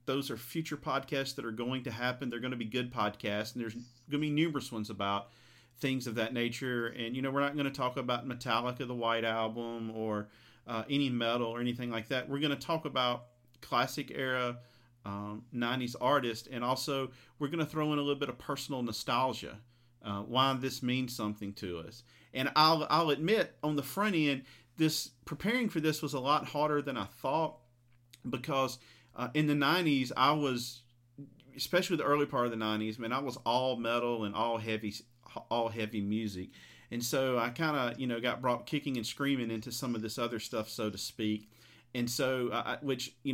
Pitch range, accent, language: 115-135 Hz, American, English